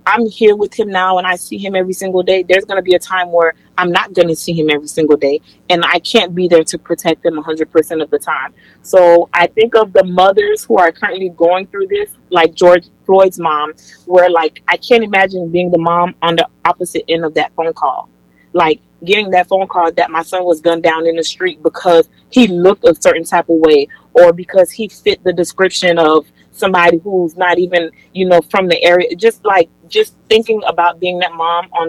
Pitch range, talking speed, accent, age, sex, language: 170-190 Hz, 225 wpm, American, 30-49, female, English